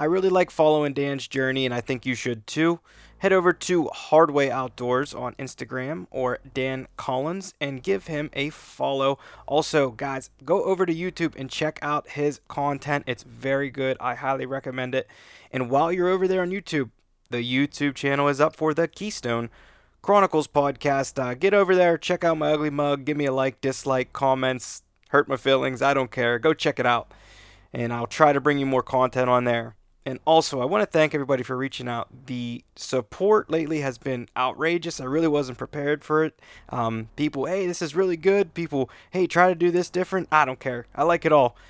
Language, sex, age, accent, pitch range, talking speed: English, male, 20-39, American, 130-165 Hz, 200 wpm